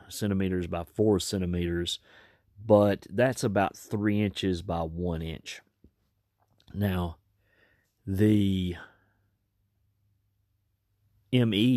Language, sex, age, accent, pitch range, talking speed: English, male, 40-59, American, 90-105 Hz, 75 wpm